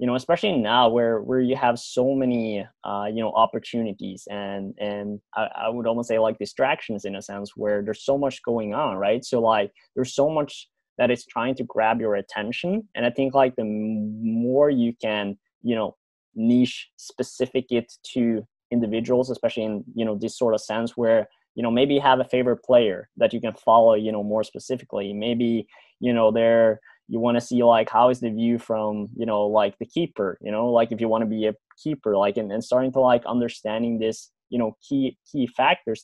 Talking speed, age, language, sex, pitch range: 215 wpm, 20-39, English, male, 110-125 Hz